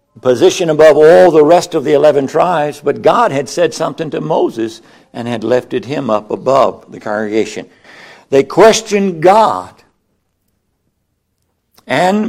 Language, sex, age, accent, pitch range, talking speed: English, male, 60-79, American, 125-185 Hz, 135 wpm